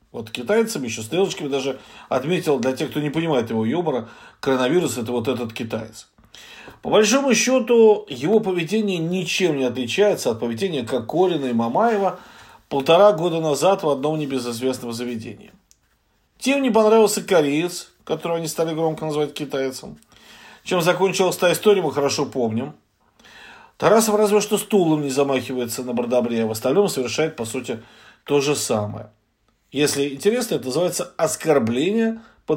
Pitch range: 120-185 Hz